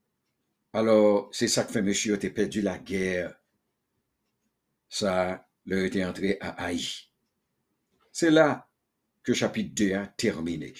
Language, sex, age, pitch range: English, male, 60-79, 110-135 Hz